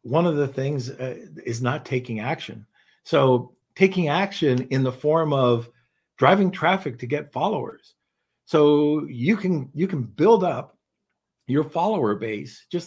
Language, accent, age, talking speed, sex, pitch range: English, American, 50-69, 150 wpm, male, 125-165 Hz